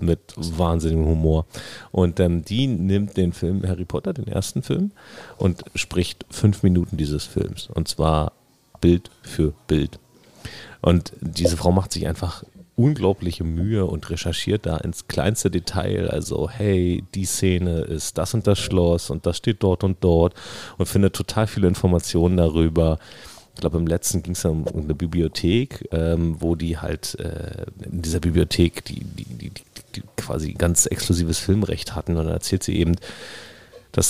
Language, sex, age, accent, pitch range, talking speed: German, male, 40-59, German, 80-95 Hz, 150 wpm